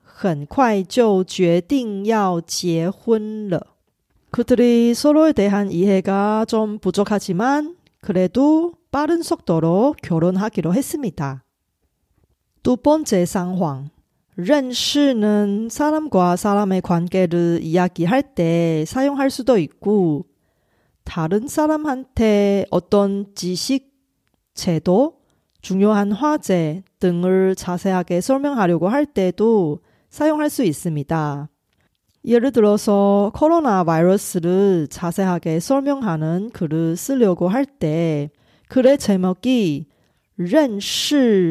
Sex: female